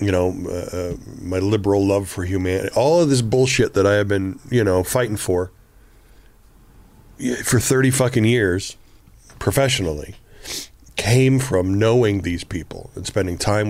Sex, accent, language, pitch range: male, American, English, 95-130 Hz